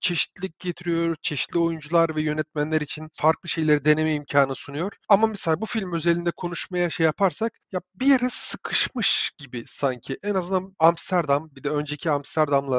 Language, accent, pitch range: Turkish, native, 150-185 Hz